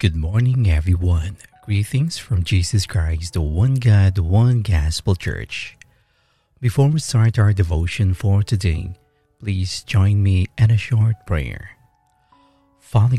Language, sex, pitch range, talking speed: English, male, 85-115 Hz, 125 wpm